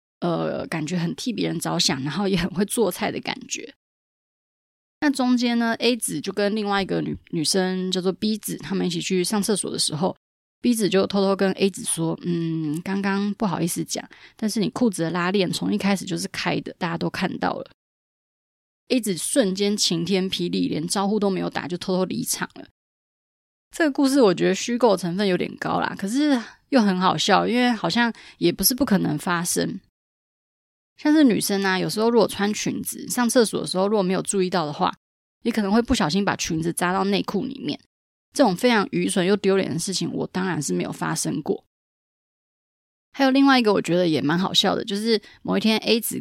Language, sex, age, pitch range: Chinese, female, 20-39, 180-220 Hz